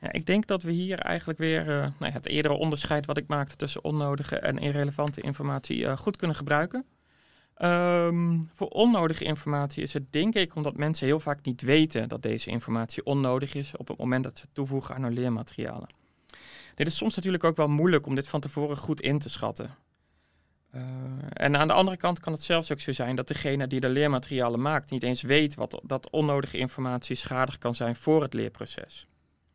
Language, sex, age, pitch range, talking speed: Dutch, male, 30-49, 125-150 Hz, 195 wpm